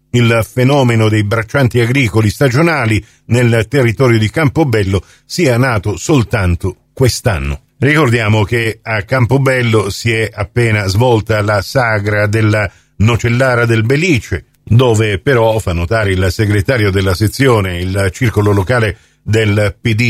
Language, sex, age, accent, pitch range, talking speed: Italian, male, 50-69, native, 105-145 Hz, 120 wpm